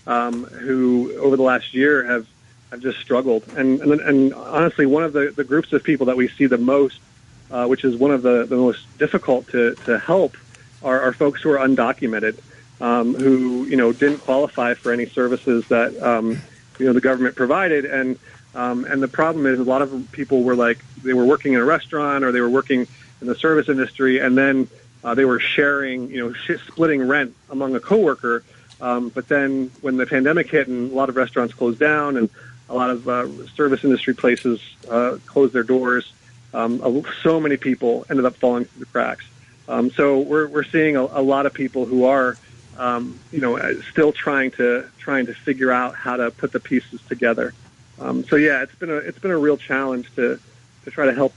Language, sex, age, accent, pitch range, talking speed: English, male, 40-59, American, 125-140 Hz, 210 wpm